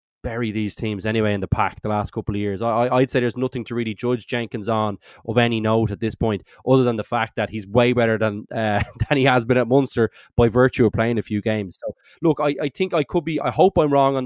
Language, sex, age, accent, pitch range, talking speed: English, male, 20-39, Irish, 110-125 Hz, 270 wpm